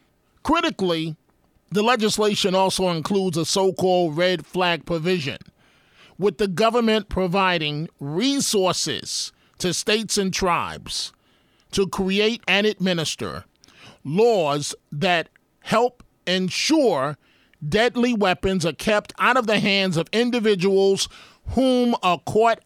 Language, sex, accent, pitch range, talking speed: English, male, American, 180-215 Hz, 105 wpm